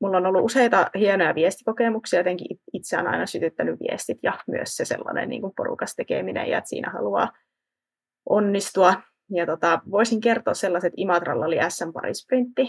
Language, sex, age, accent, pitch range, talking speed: Finnish, female, 20-39, native, 180-245 Hz, 155 wpm